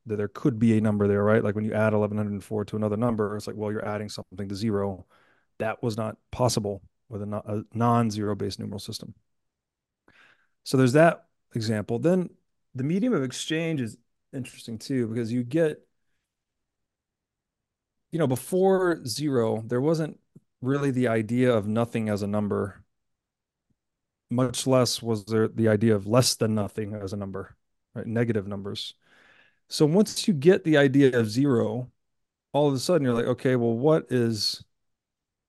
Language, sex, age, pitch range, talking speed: English, male, 30-49, 105-135 Hz, 165 wpm